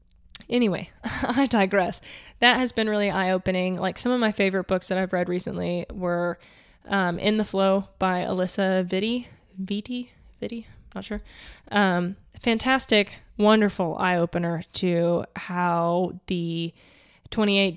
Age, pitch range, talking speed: 10-29, 185-205 Hz, 135 wpm